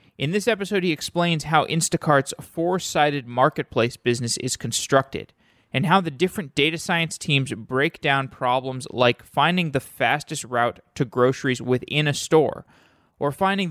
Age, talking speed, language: 20-39, 150 wpm, English